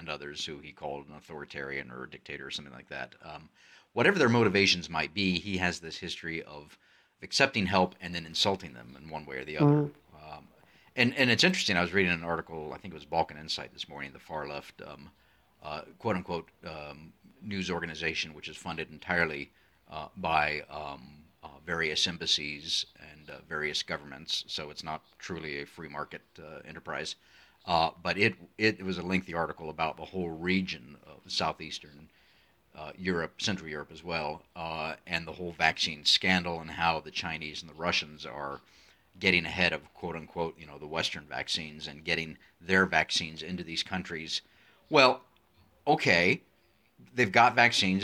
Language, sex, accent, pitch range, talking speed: English, male, American, 75-95 Hz, 175 wpm